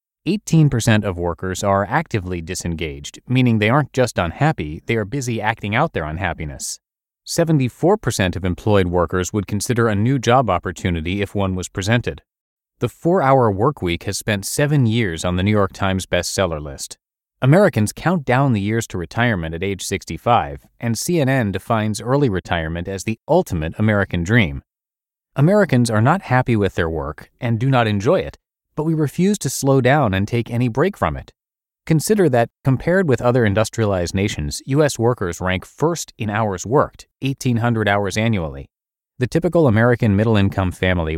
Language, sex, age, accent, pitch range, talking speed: English, male, 30-49, American, 95-130 Hz, 165 wpm